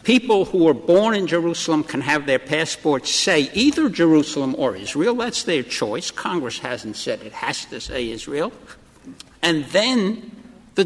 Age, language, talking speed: 60-79, English, 160 wpm